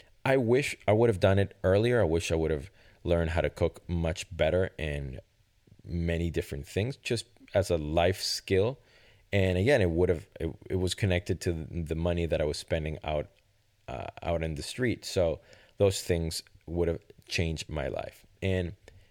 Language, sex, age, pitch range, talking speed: English, male, 30-49, 80-100 Hz, 185 wpm